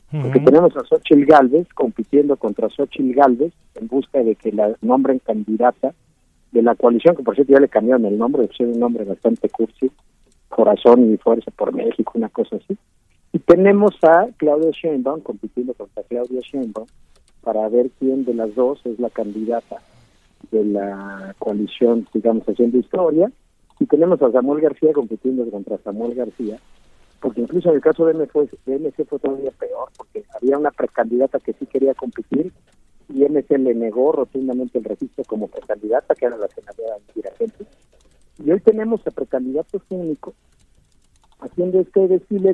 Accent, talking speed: Mexican, 170 wpm